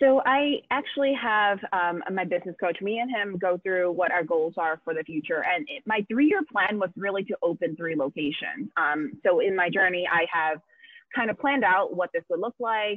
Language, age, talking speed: English, 20-39, 215 wpm